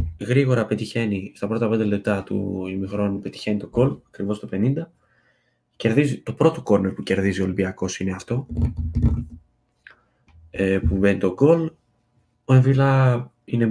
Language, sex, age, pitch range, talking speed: Greek, male, 20-39, 100-125 Hz, 135 wpm